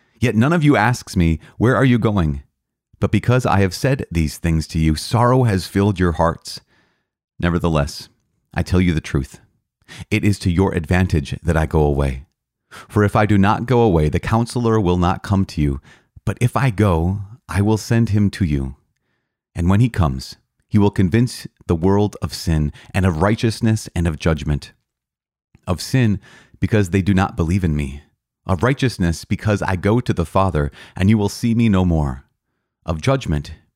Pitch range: 85-115 Hz